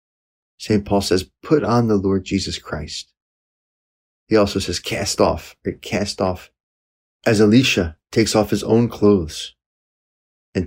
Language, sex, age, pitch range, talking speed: English, male, 30-49, 75-110 Hz, 140 wpm